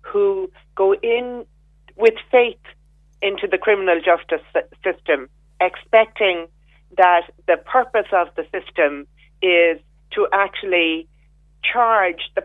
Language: English